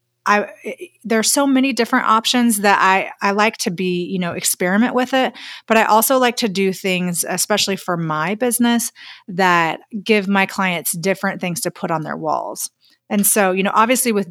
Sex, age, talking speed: female, 30-49, 195 wpm